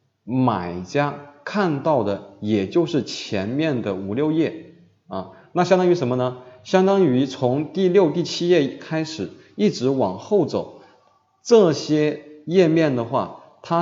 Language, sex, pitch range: Chinese, male, 110-155 Hz